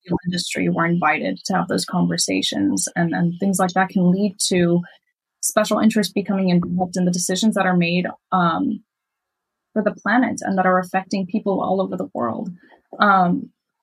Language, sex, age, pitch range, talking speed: English, female, 20-39, 180-215 Hz, 170 wpm